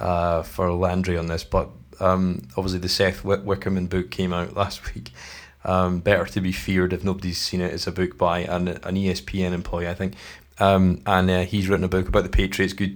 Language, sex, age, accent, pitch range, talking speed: English, male, 20-39, British, 90-100 Hz, 220 wpm